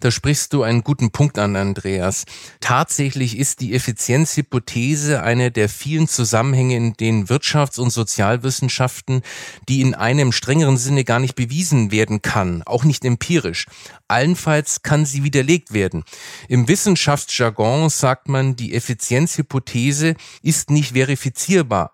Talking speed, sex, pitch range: 130 wpm, male, 115-145 Hz